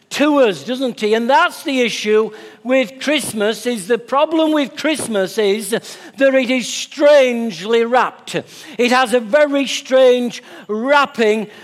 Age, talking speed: 60-79, 140 wpm